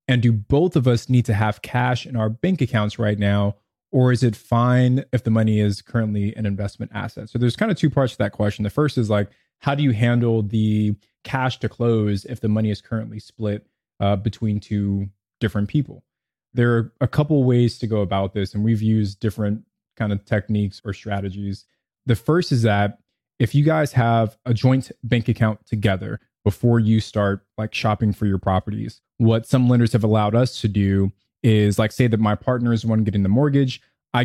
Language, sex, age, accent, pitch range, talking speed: English, male, 20-39, American, 105-120 Hz, 210 wpm